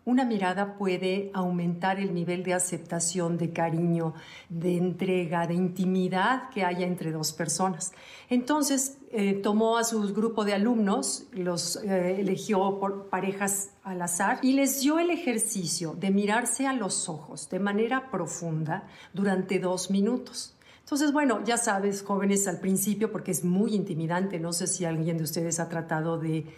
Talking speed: 160 wpm